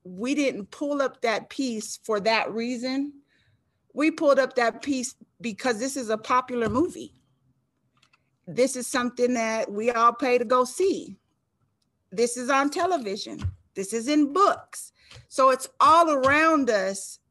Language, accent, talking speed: English, American, 150 wpm